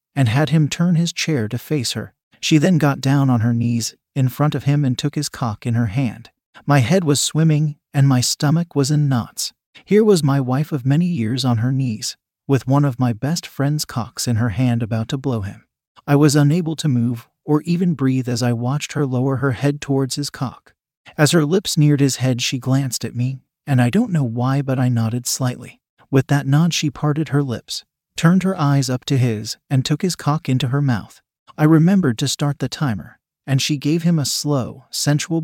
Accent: American